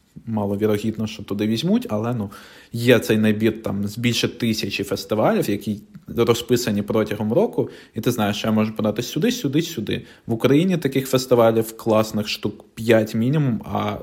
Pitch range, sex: 105-120 Hz, male